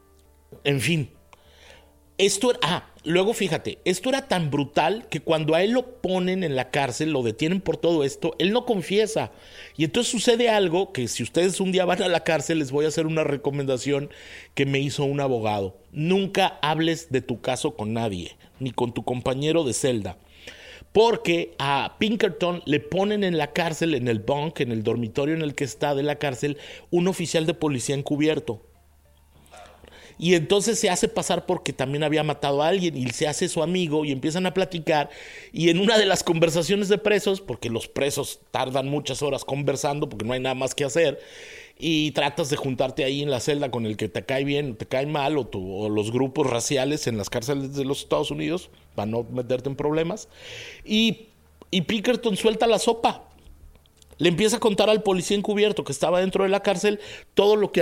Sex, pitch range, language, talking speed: male, 130-185 Hz, Spanish, 195 wpm